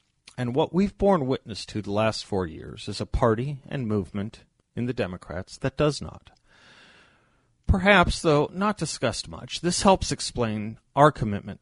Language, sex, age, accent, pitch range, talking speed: English, male, 40-59, American, 100-130 Hz, 160 wpm